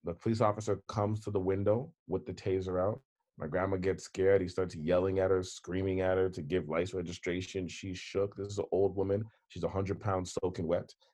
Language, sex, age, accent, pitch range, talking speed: English, male, 30-49, American, 95-105 Hz, 215 wpm